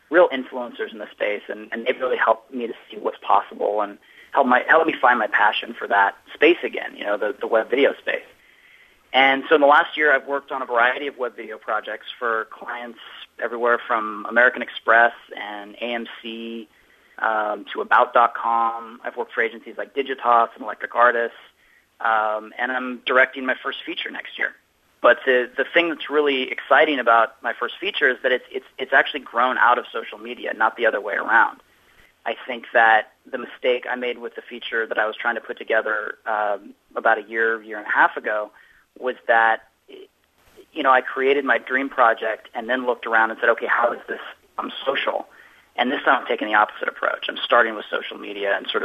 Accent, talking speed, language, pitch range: American, 205 wpm, English, 115-170 Hz